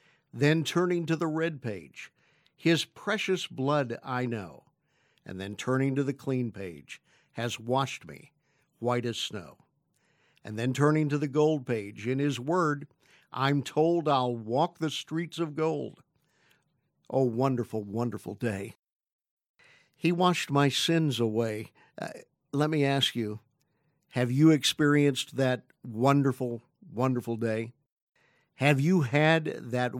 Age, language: 50-69, English